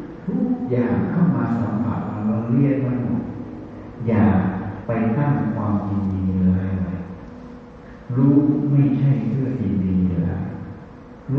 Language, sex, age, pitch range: Thai, male, 60-79, 110-160 Hz